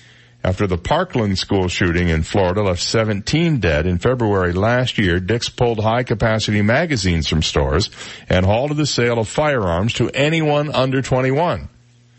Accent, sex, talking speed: American, male, 155 wpm